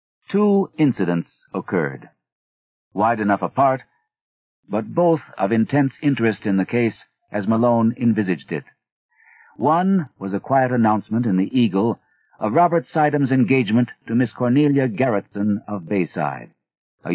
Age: 50-69